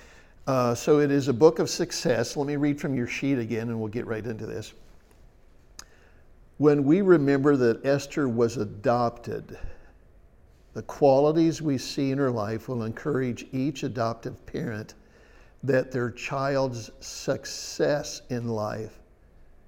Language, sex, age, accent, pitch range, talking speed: English, male, 60-79, American, 110-135 Hz, 140 wpm